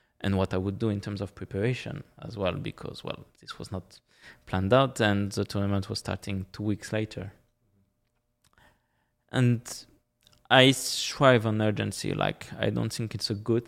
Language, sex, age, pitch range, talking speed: English, male, 20-39, 100-115 Hz, 165 wpm